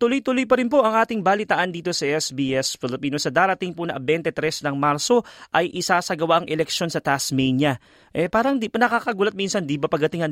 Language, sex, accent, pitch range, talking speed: Filipino, male, native, 145-205 Hz, 190 wpm